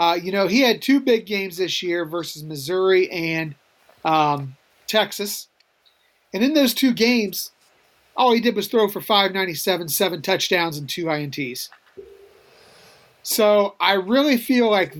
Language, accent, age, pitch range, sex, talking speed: English, American, 40-59, 175-230 Hz, male, 150 wpm